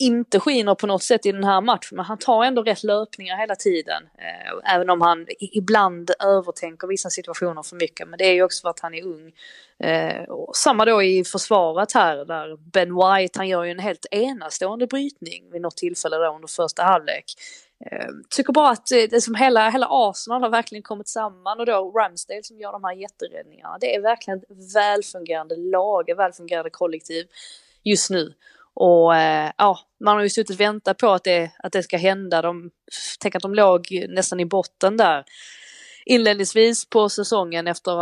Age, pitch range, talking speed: 20-39, 175-215 Hz, 190 wpm